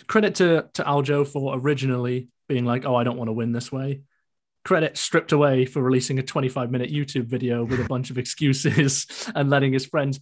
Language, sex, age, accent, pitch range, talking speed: English, male, 30-49, British, 120-145 Hz, 200 wpm